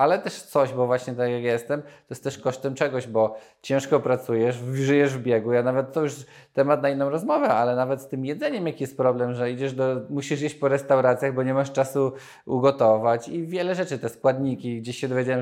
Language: Polish